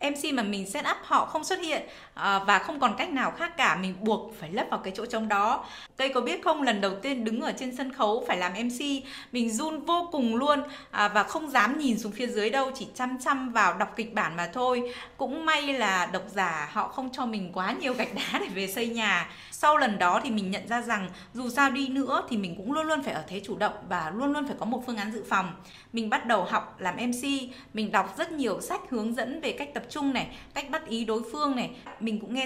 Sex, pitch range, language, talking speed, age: female, 200-275 Hz, Vietnamese, 255 wpm, 20-39